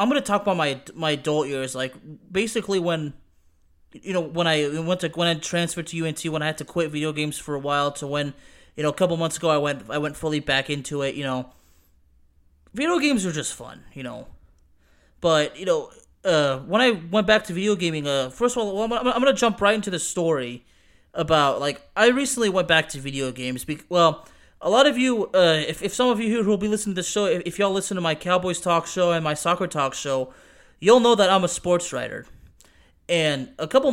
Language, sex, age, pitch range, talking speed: English, male, 20-39, 145-190 Hz, 235 wpm